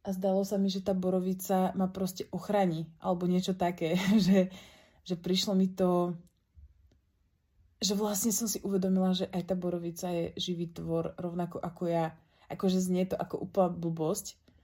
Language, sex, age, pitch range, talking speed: Slovak, female, 20-39, 165-185 Hz, 165 wpm